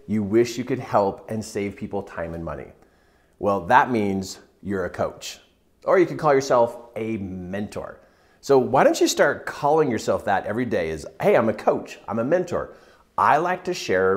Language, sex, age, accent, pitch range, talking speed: English, male, 40-59, American, 105-160 Hz, 195 wpm